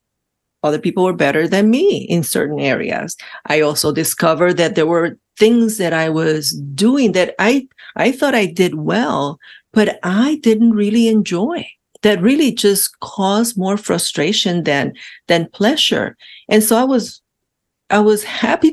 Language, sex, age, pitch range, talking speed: English, female, 40-59, 165-215 Hz, 155 wpm